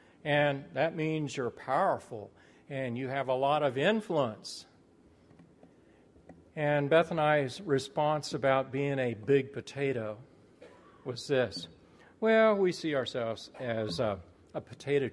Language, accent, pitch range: English, American, 135-190 Hz